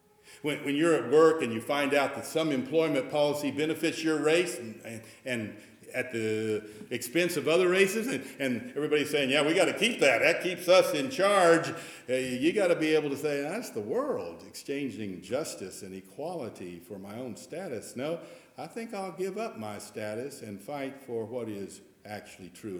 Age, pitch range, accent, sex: 60-79, 130-185 Hz, American, male